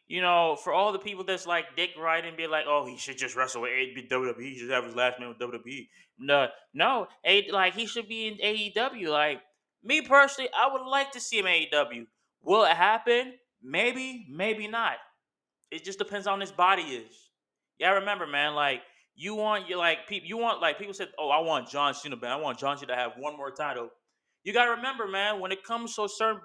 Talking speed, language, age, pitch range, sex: 225 wpm, English, 20-39, 170-230 Hz, male